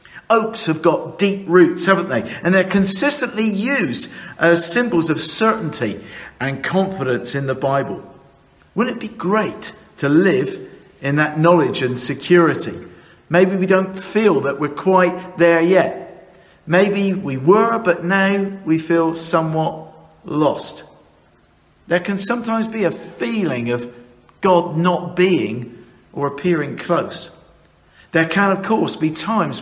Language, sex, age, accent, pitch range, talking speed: English, male, 50-69, British, 140-190 Hz, 140 wpm